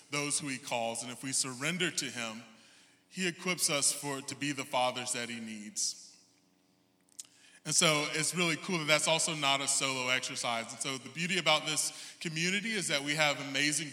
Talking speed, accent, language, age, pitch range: 195 wpm, American, English, 20-39, 125-155 Hz